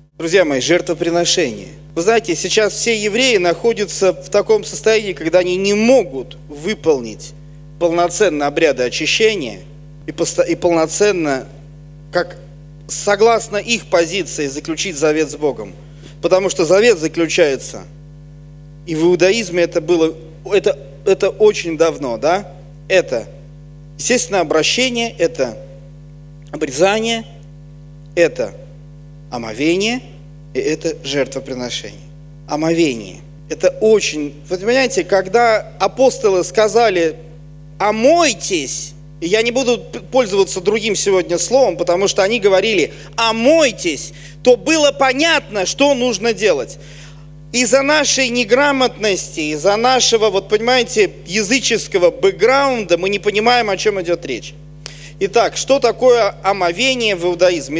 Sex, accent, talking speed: male, native, 105 wpm